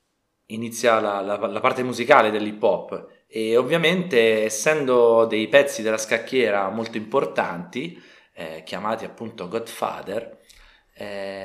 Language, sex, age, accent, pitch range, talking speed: Italian, male, 30-49, native, 100-125 Hz, 115 wpm